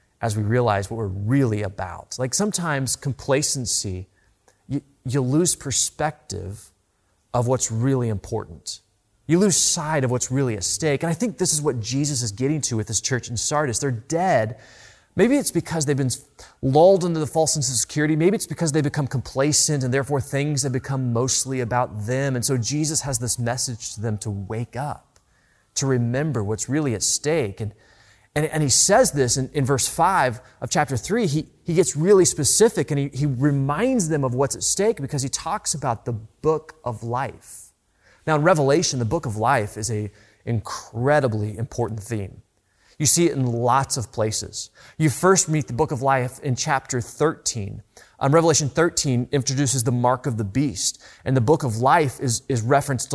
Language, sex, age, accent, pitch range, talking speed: English, male, 30-49, American, 115-150 Hz, 190 wpm